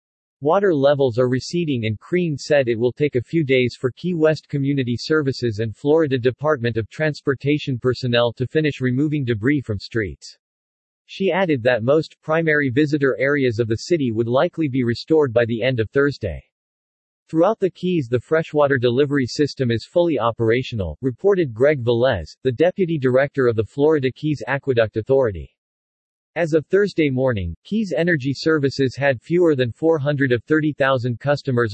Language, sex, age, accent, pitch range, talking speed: English, male, 40-59, American, 120-150 Hz, 155 wpm